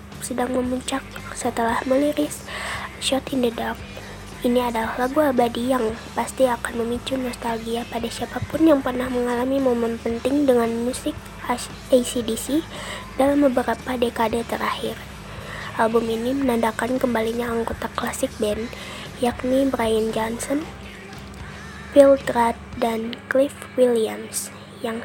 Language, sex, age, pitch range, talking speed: Indonesian, female, 20-39, 230-255 Hz, 115 wpm